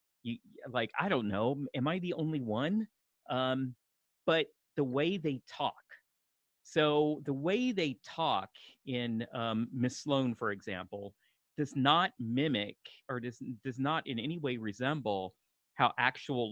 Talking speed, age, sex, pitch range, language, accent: 145 wpm, 40-59, male, 110-145 Hz, English, American